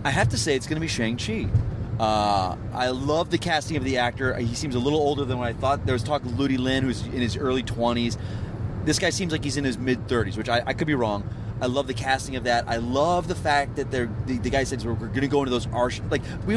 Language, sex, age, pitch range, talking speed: English, male, 30-49, 110-135 Hz, 285 wpm